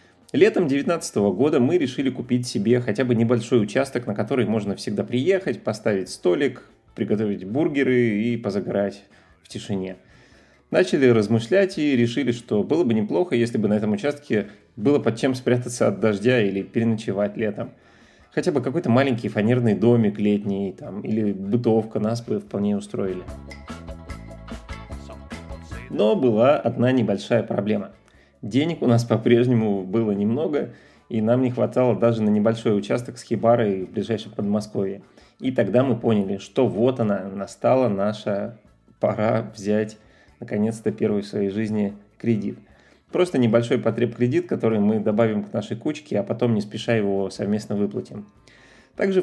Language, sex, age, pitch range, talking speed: Russian, male, 30-49, 100-125 Hz, 145 wpm